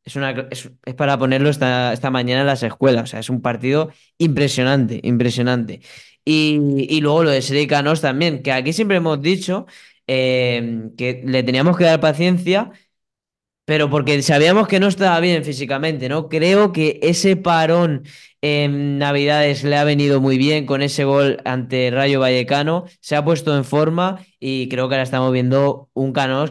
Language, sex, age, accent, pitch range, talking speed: Spanish, male, 10-29, Spanish, 125-155 Hz, 175 wpm